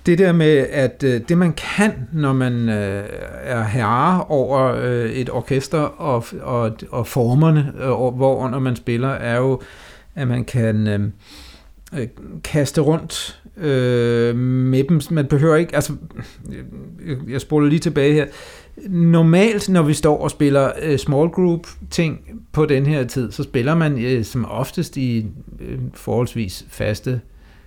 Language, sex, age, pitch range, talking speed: Danish, male, 60-79, 120-150 Hz, 125 wpm